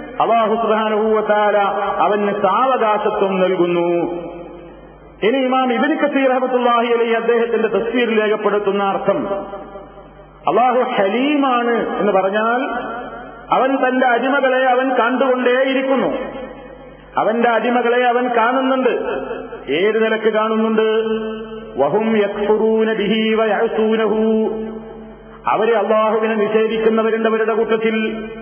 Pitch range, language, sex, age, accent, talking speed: 215-235 Hz, Malayalam, male, 50-69, native, 90 wpm